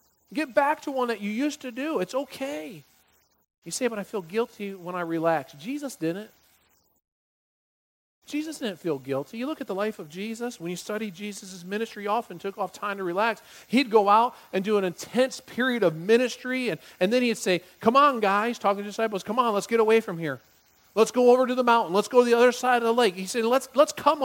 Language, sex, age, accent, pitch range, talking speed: English, male, 40-59, American, 180-250 Hz, 230 wpm